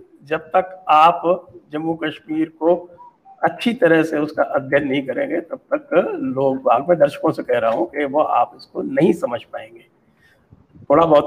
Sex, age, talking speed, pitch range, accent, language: male, 60-79, 165 wpm, 150-230 Hz, Indian, English